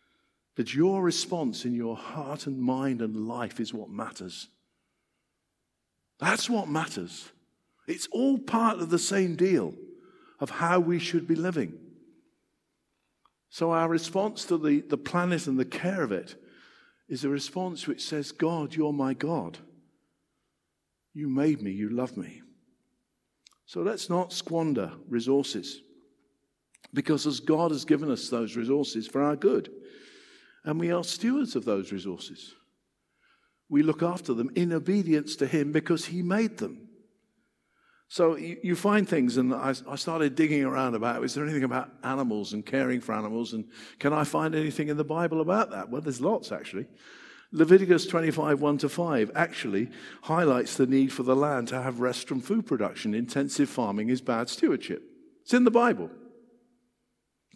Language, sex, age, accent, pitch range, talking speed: English, male, 50-69, British, 135-190 Hz, 160 wpm